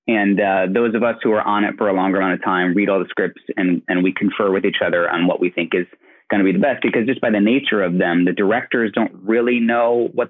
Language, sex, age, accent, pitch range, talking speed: English, male, 30-49, American, 95-115 Hz, 285 wpm